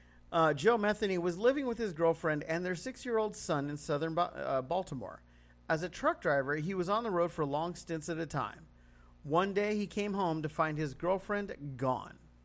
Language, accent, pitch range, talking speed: English, American, 130-185 Hz, 200 wpm